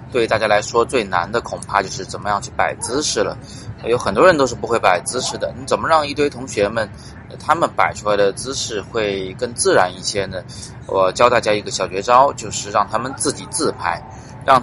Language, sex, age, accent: Chinese, male, 20-39, native